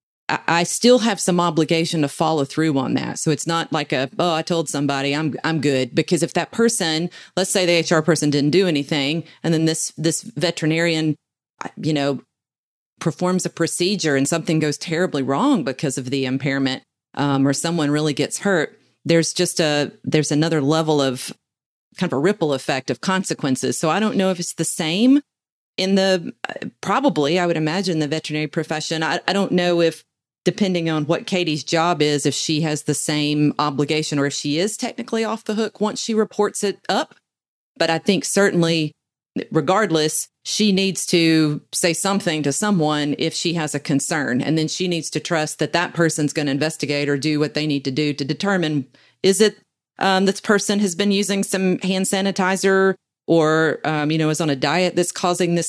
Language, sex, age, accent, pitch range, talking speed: English, female, 30-49, American, 150-185 Hz, 195 wpm